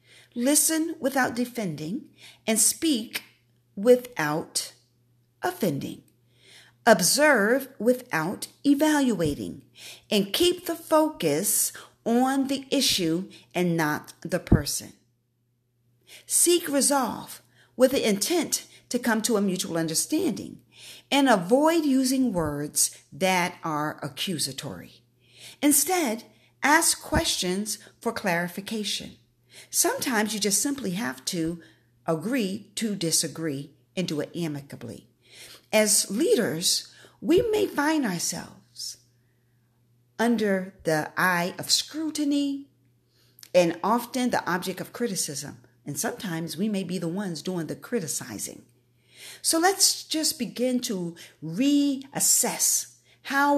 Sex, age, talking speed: female, 40-59, 100 wpm